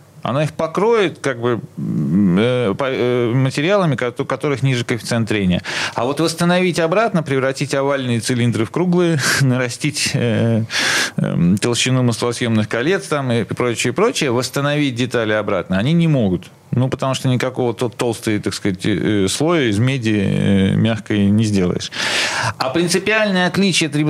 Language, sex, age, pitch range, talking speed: Russian, male, 40-59, 115-150 Hz, 120 wpm